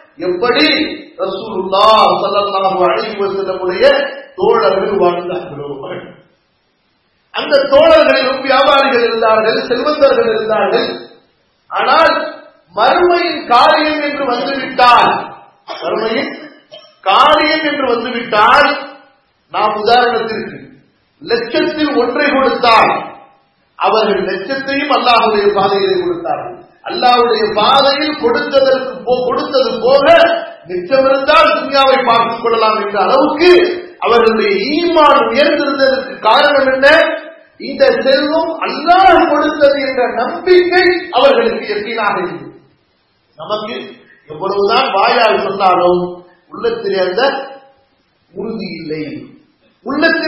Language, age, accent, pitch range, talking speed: English, 40-59, Indian, 215-310 Hz, 40 wpm